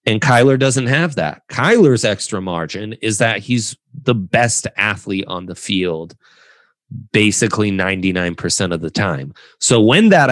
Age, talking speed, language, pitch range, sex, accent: 30-49, 145 wpm, English, 95-120 Hz, male, American